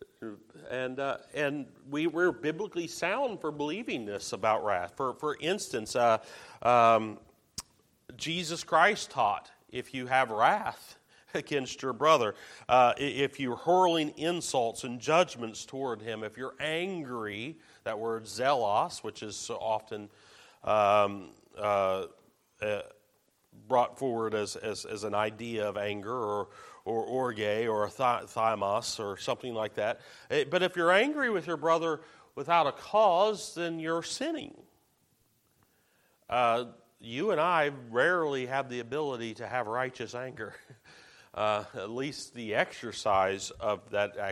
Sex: male